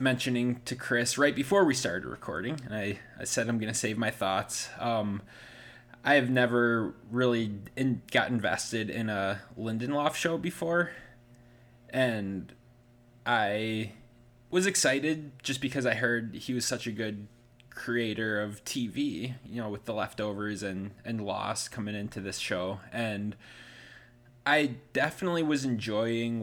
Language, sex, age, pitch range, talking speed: English, male, 20-39, 110-125 Hz, 140 wpm